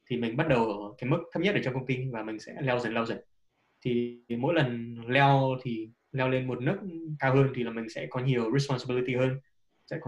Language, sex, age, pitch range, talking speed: Vietnamese, male, 20-39, 120-145 Hz, 250 wpm